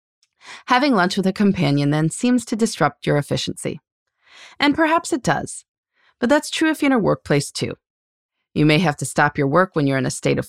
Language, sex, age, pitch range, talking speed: English, female, 30-49, 145-235 Hz, 210 wpm